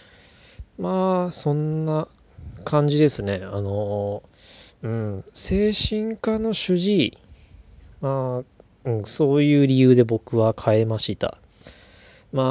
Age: 20-39